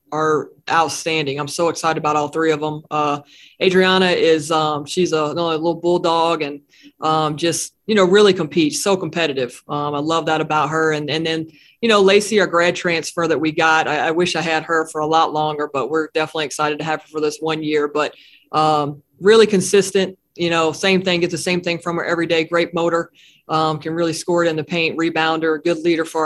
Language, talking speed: English, 225 wpm